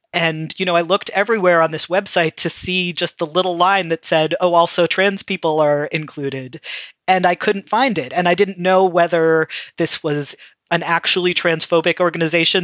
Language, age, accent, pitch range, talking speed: English, 30-49, American, 160-190 Hz, 185 wpm